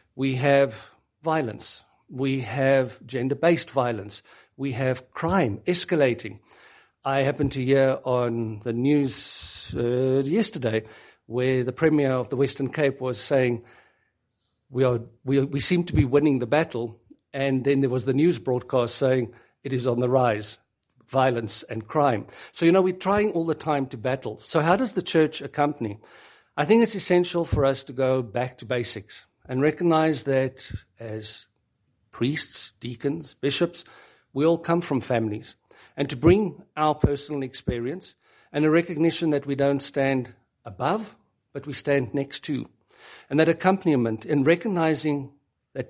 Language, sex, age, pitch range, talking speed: English, male, 50-69, 125-160 Hz, 155 wpm